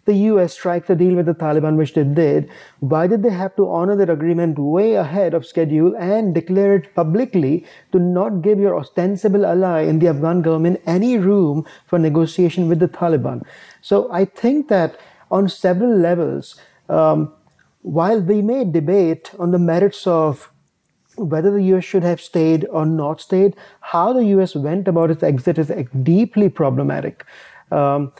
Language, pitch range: English, 160-195 Hz